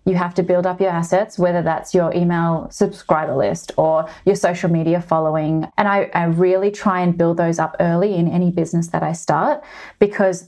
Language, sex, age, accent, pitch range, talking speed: English, female, 30-49, Australian, 170-200 Hz, 200 wpm